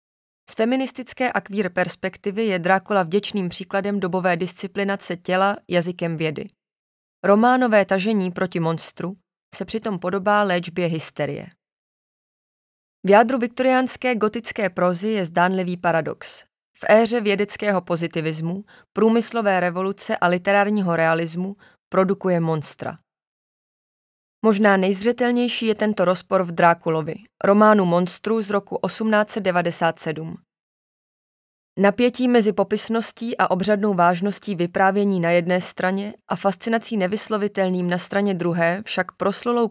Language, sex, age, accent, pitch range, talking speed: Czech, female, 20-39, native, 180-215 Hz, 110 wpm